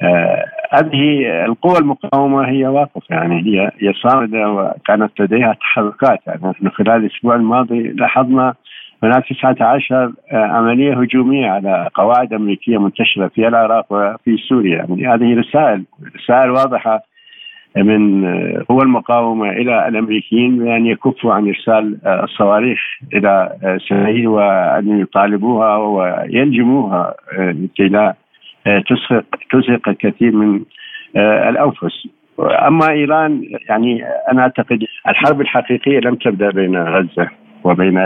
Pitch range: 100-125 Hz